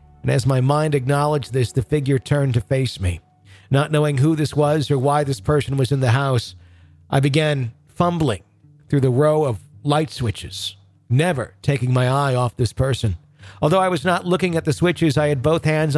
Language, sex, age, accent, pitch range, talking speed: English, male, 50-69, American, 125-155 Hz, 200 wpm